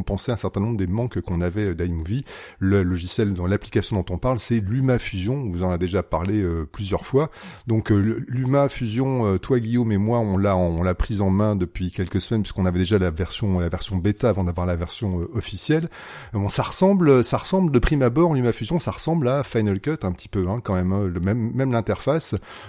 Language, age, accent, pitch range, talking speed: French, 30-49, French, 95-125 Hz, 210 wpm